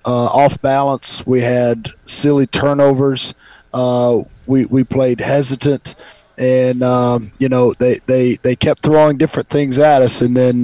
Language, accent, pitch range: English, American, 125-140 Hz